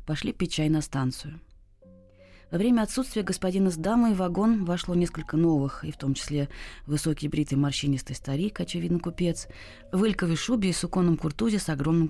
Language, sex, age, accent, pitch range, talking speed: Russian, female, 20-39, native, 140-180 Hz, 170 wpm